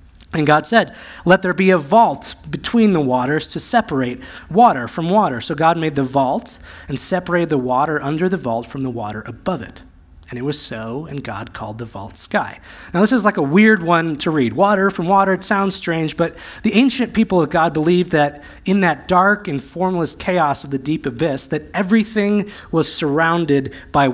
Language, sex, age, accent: English, male, 20-39, American